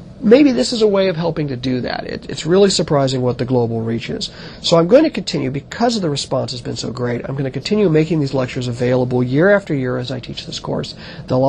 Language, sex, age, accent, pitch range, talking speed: English, male, 40-59, American, 140-175 Hz, 255 wpm